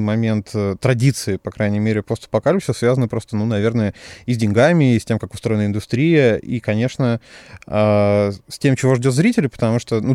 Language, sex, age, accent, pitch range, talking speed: Russian, male, 20-39, native, 105-130 Hz, 175 wpm